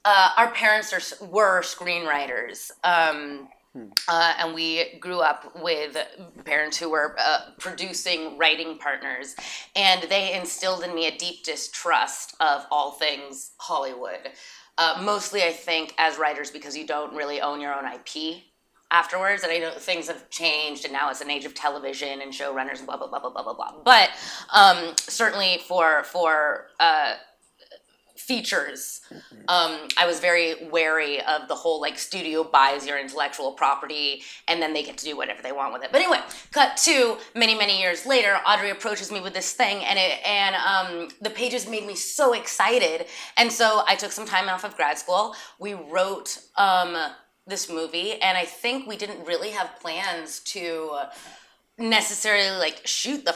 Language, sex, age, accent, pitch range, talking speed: English, female, 20-39, American, 150-200 Hz, 170 wpm